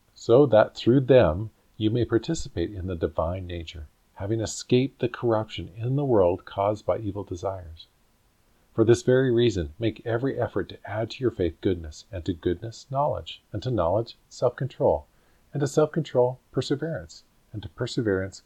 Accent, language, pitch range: American, English, 85-120 Hz